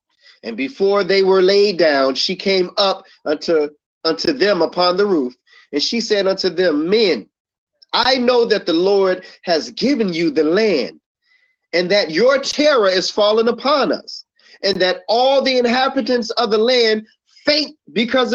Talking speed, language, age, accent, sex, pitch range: 160 wpm, English, 40-59, American, male, 185-280 Hz